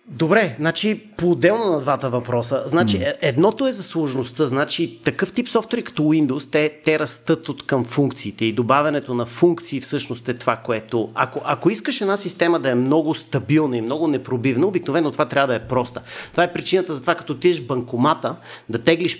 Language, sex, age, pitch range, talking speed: Bulgarian, male, 30-49, 135-190 Hz, 190 wpm